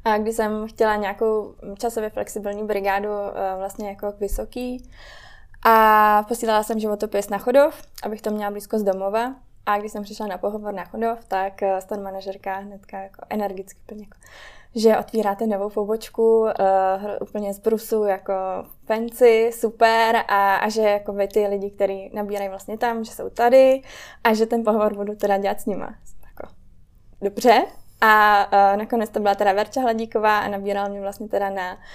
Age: 20-39